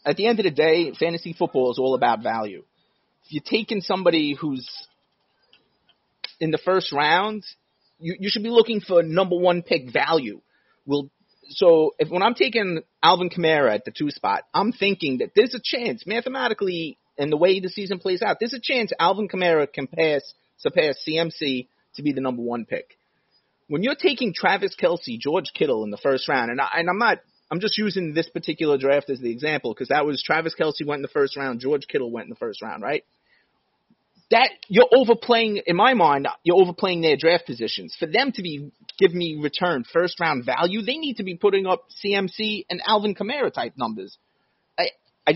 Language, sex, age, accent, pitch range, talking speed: English, male, 30-49, American, 155-225 Hz, 200 wpm